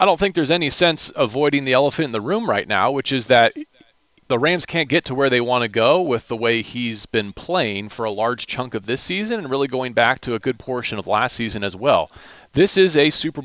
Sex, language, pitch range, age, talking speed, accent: male, English, 100-150 Hz, 40-59, 255 wpm, American